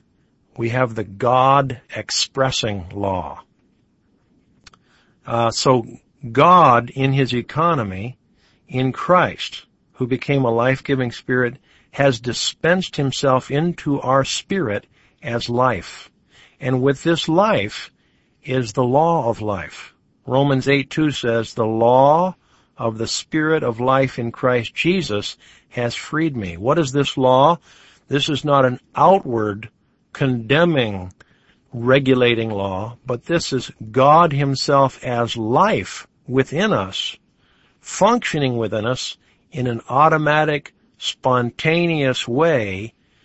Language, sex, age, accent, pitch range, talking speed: English, male, 60-79, American, 120-145 Hz, 110 wpm